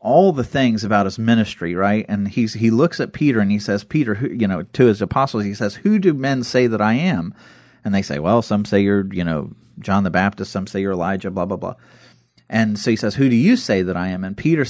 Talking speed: 255 wpm